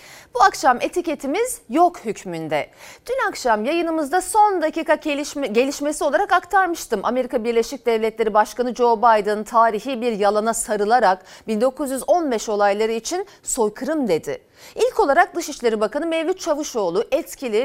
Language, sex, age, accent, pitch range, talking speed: Turkish, female, 40-59, native, 230-340 Hz, 120 wpm